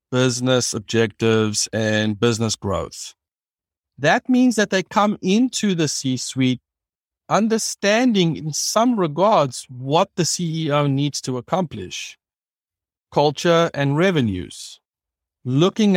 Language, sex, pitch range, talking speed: English, male, 125-175 Hz, 100 wpm